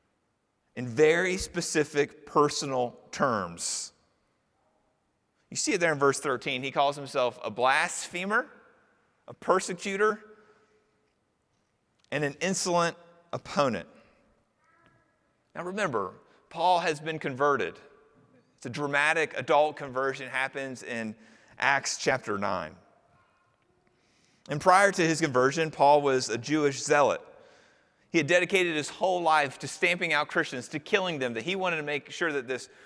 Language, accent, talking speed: English, American, 130 wpm